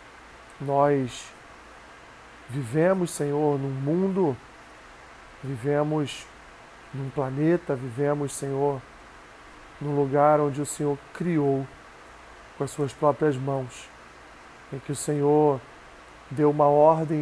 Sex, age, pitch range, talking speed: male, 40-59, 140-160 Hz, 100 wpm